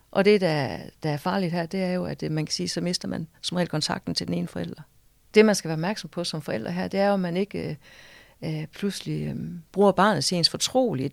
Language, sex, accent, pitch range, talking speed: Danish, female, native, 160-205 Hz, 230 wpm